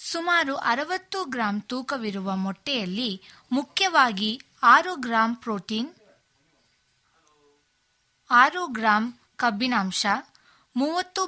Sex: female